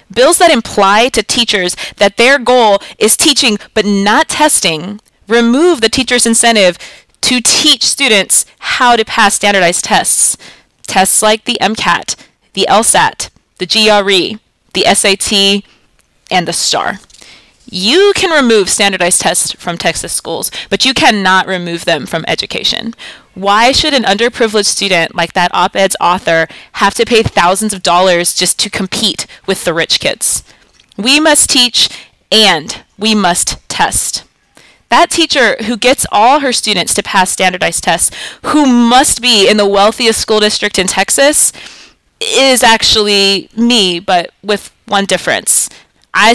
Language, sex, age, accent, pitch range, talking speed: English, female, 20-39, American, 185-240 Hz, 145 wpm